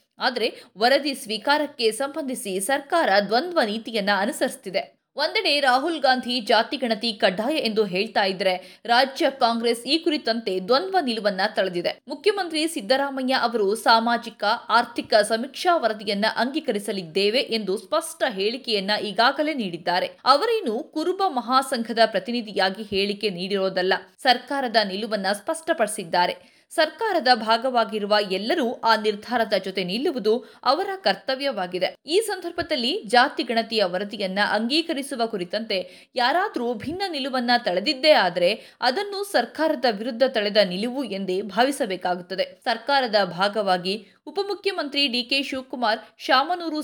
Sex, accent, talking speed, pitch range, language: female, native, 100 wpm, 210-285 Hz, Kannada